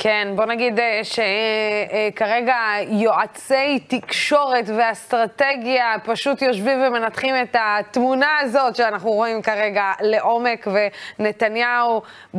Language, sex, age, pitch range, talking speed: Hebrew, female, 20-39, 190-230 Hz, 85 wpm